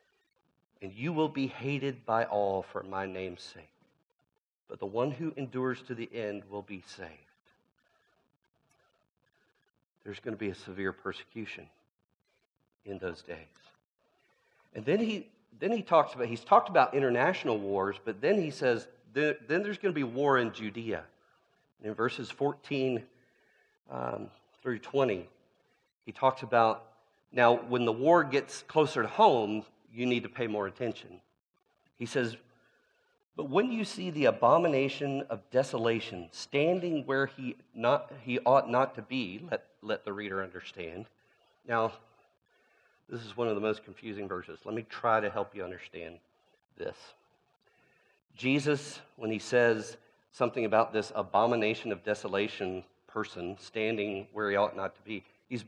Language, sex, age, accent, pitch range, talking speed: English, male, 40-59, American, 105-135 Hz, 150 wpm